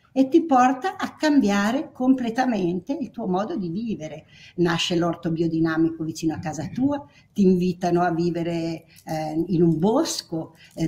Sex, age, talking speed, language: female, 50-69, 150 wpm, Italian